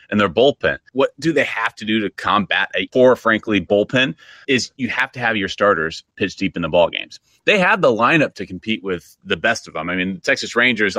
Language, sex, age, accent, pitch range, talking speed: English, male, 30-49, American, 100-120 Hz, 230 wpm